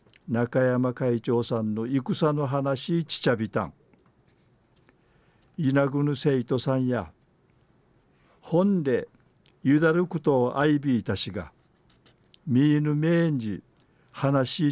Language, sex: Japanese, male